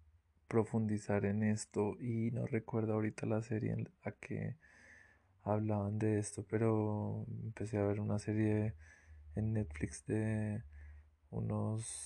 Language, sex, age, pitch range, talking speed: Spanish, male, 20-39, 85-115 Hz, 120 wpm